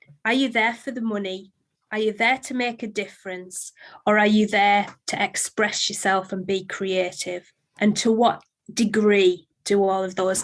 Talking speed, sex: 180 wpm, female